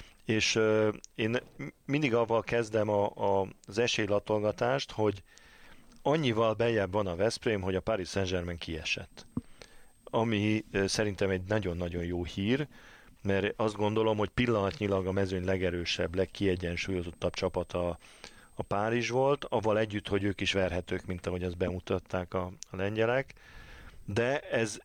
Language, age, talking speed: Hungarian, 40-59, 135 wpm